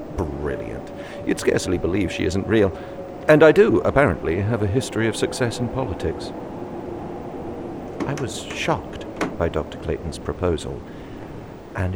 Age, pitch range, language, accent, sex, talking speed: 50-69, 85-135 Hz, English, British, male, 130 wpm